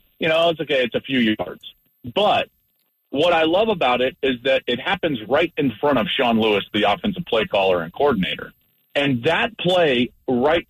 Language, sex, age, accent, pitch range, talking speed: English, male, 40-59, American, 120-170 Hz, 190 wpm